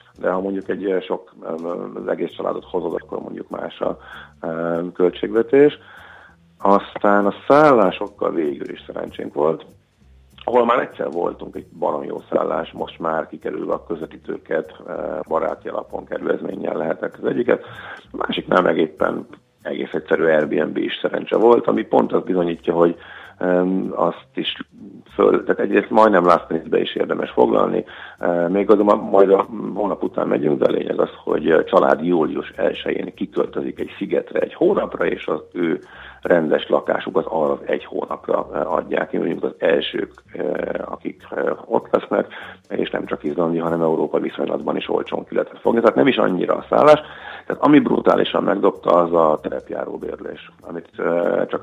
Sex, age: male, 50-69